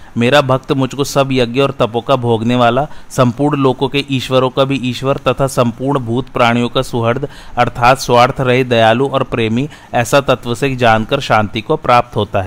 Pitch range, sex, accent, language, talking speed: 115-135 Hz, male, native, Hindi, 180 wpm